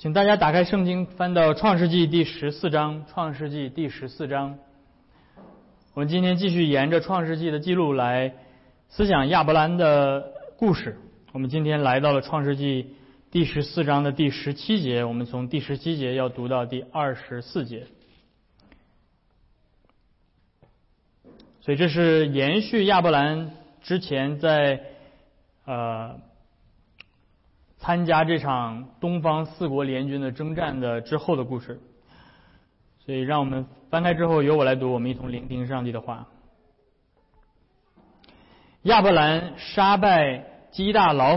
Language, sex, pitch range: Chinese, male, 125-165 Hz